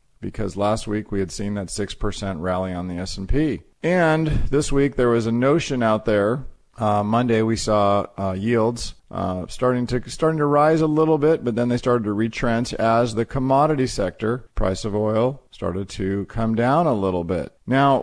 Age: 40-59